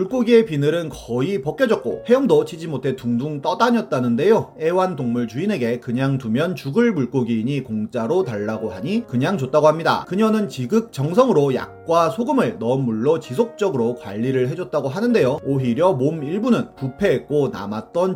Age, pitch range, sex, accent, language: 30-49, 120-190 Hz, male, native, Korean